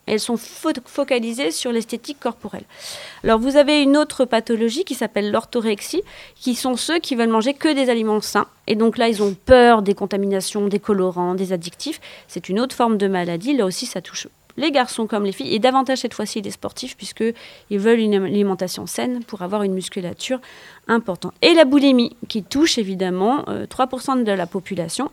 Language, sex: French, female